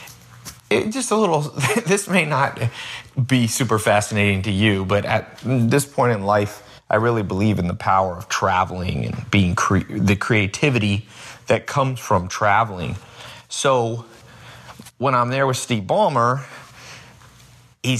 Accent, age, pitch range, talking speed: American, 30-49, 105-140 Hz, 135 wpm